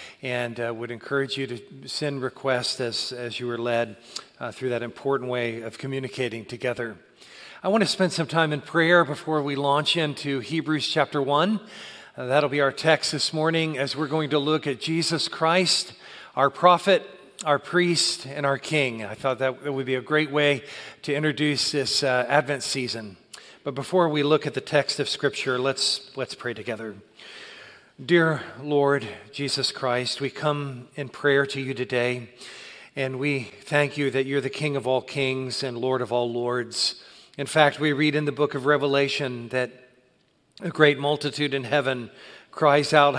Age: 40-59